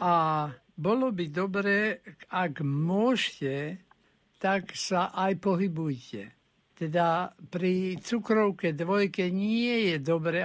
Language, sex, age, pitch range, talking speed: Slovak, male, 60-79, 155-190 Hz, 100 wpm